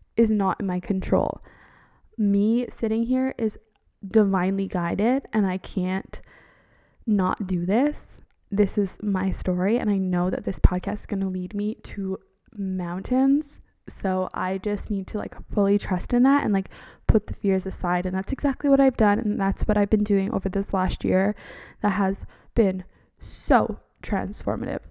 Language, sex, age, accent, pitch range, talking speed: English, female, 20-39, American, 185-210 Hz, 170 wpm